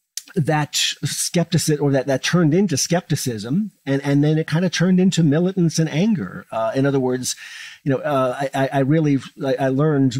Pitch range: 105-145 Hz